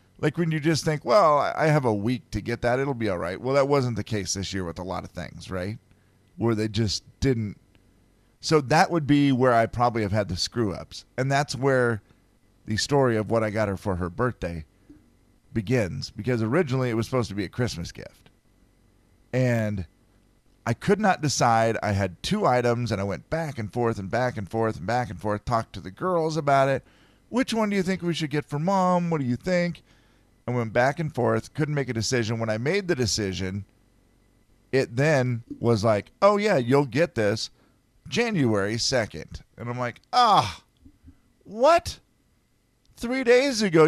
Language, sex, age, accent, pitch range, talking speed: English, male, 40-59, American, 105-140 Hz, 200 wpm